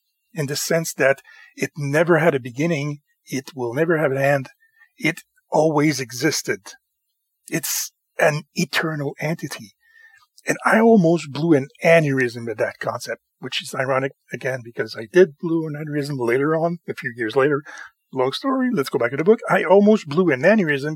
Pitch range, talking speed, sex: 130-190 Hz, 170 wpm, male